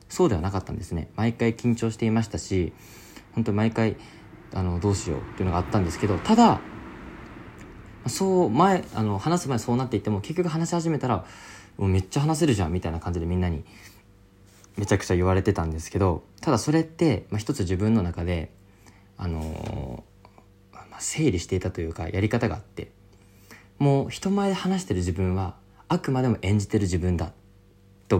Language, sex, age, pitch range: Japanese, male, 20-39, 95-115 Hz